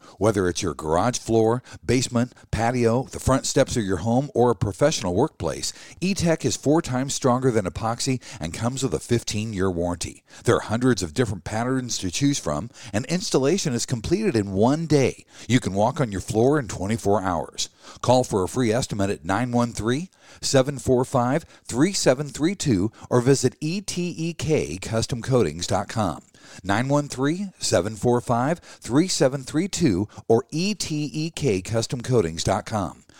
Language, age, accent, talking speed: English, 50-69, American, 125 wpm